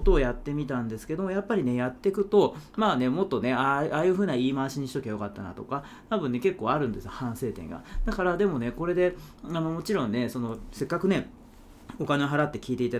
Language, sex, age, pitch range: Japanese, male, 40-59, 120-195 Hz